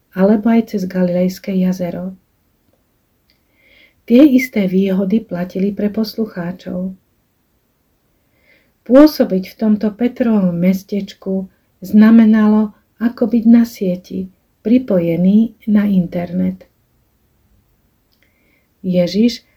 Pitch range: 185-225 Hz